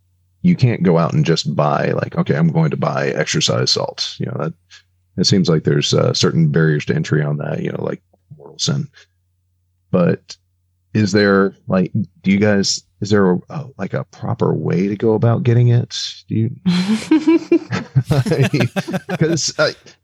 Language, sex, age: English, male, 40-59